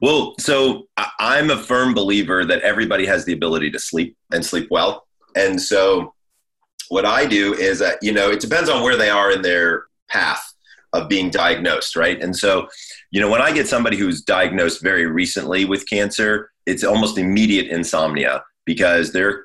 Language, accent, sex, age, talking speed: English, American, male, 30-49, 180 wpm